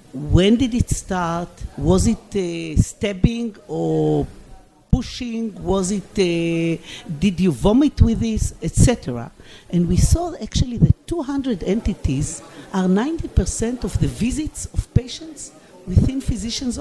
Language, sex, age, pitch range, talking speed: Hebrew, female, 50-69, 170-230 Hz, 130 wpm